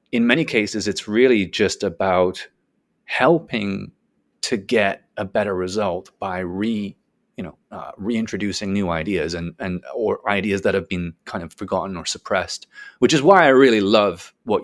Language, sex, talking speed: English, male, 165 wpm